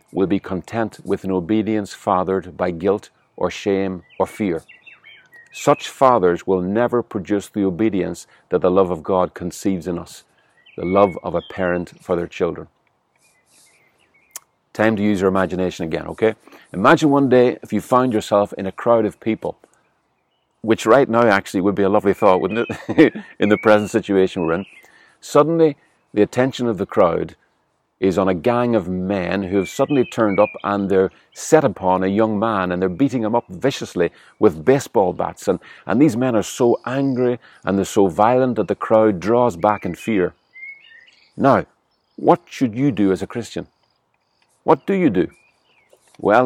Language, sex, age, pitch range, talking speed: English, male, 50-69, 95-120 Hz, 175 wpm